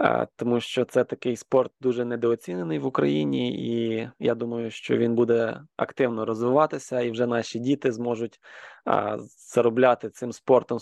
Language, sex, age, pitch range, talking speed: Ukrainian, male, 20-39, 115-130 Hz, 140 wpm